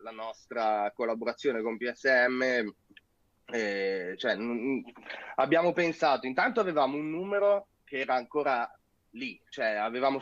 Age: 30-49